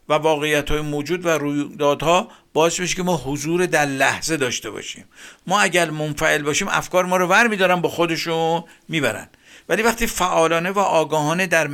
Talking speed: 175 wpm